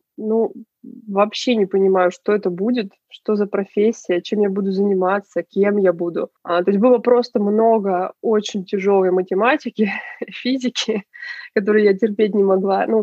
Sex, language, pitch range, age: female, Russian, 195-245 Hz, 20-39